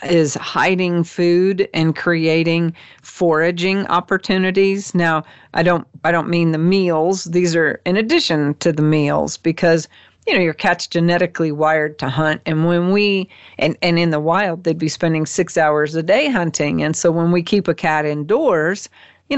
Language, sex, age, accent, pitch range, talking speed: English, female, 50-69, American, 150-175 Hz, 175 wpm